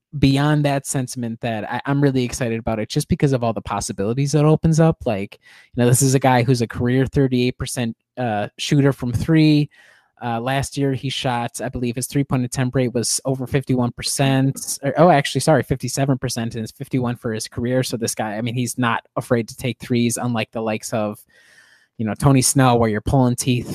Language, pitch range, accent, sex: English, 120-140 Hz, American, male